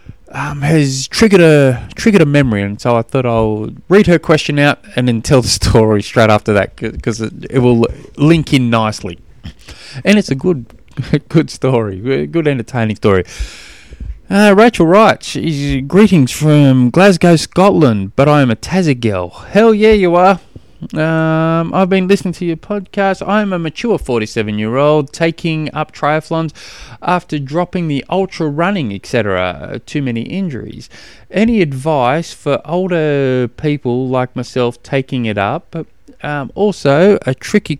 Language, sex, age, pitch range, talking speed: English, male, 20-39, 120-165 Hz, 155 wpm